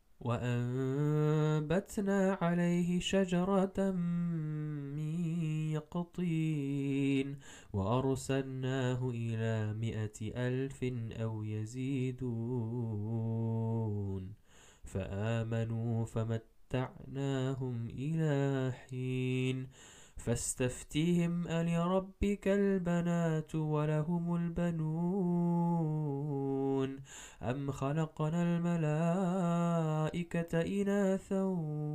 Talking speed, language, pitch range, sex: 45 wpm, English, 120-160 Hz, male